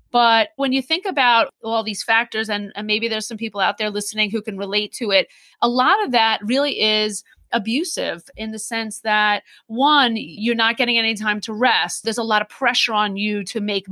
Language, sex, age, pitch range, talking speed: English, female, 30-49, 210-255 Hz, 215 wpm